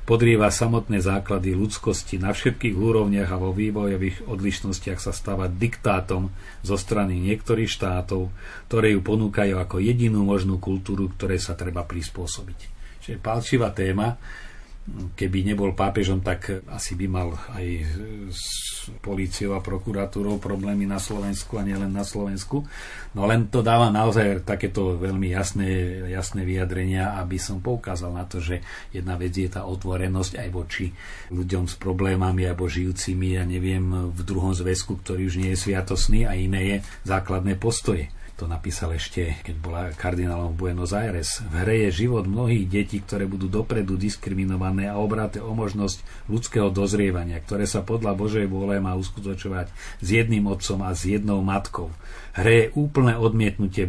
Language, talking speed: Slovak, 150 wpm